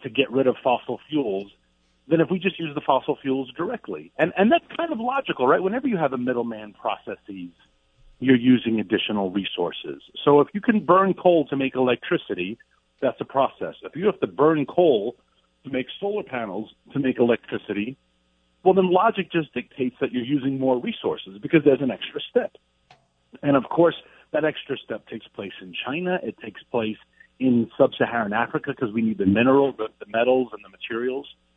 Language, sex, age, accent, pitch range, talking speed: English, male, 40-59, American, 115-180 Hz, 185 wpm